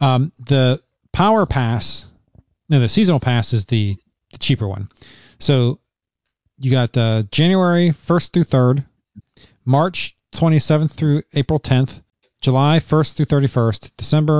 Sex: male